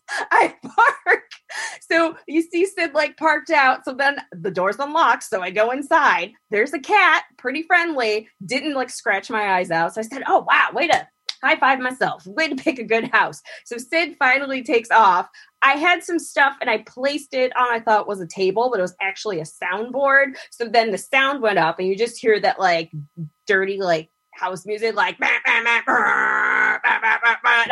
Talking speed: 190 wpm